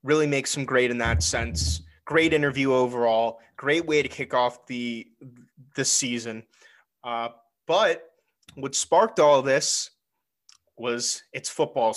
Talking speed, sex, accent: 140 wpm, male, American